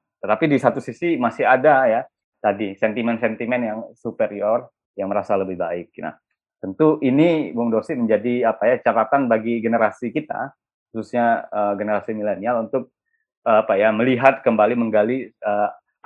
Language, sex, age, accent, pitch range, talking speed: Indonesian, male, 20-39, native, 105-135 Hz, 145 wpm